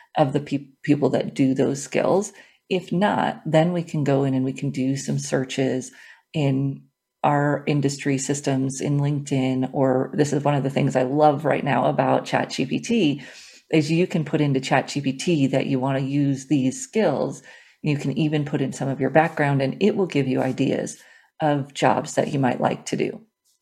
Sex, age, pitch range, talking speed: female, 40-59, 135-160 Hz, 190 wpm